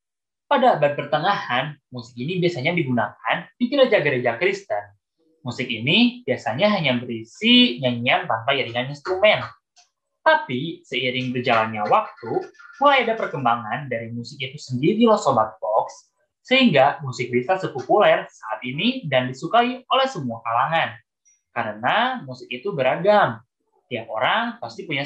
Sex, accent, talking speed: male, native, 125 wpm